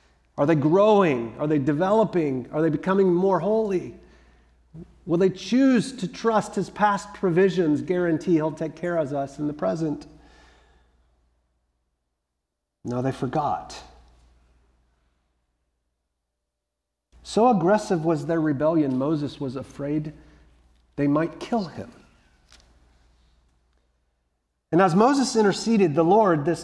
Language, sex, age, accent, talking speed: English, male, 40-59, American, 115 wpm